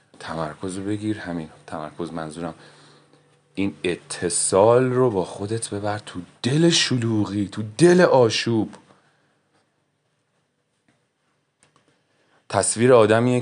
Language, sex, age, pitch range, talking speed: Persian, male, 30-49, 95-115 Hz, 90 wpm